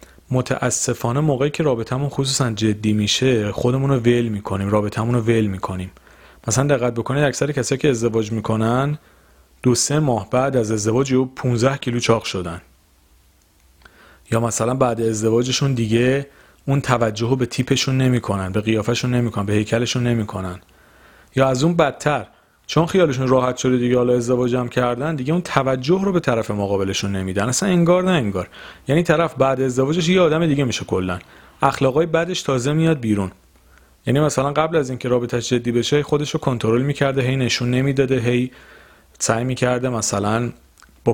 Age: 40-59